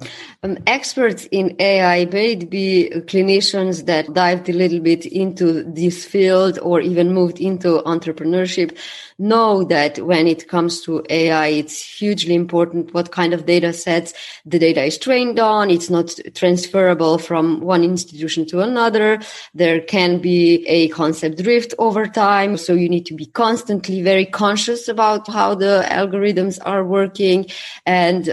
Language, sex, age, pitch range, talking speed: English, female, 20-39, 170-195 Hz, 150 wpm